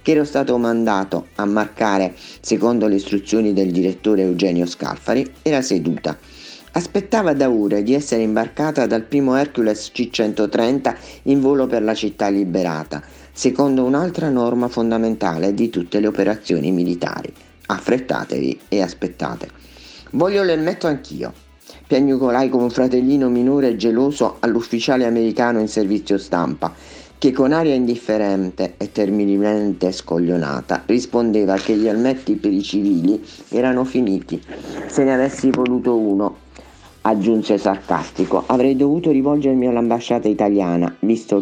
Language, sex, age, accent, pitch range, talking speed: Italian, male, 50-69, native, 95-130 Hz, 125 wpm